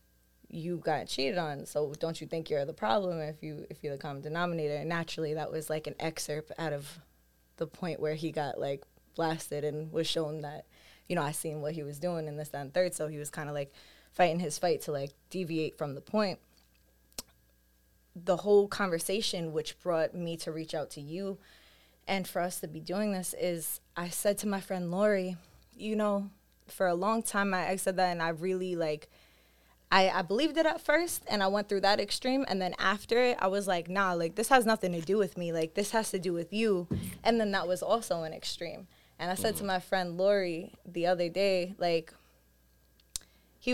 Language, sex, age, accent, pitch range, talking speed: English, female, 20-39, American, 155-195 Hz, 215 wpm